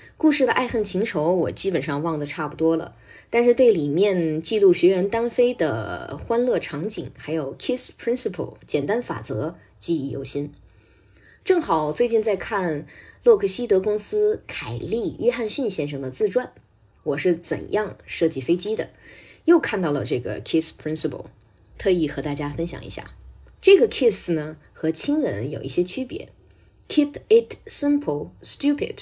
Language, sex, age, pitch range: Chinese, female, 20-39, 150-240 Hz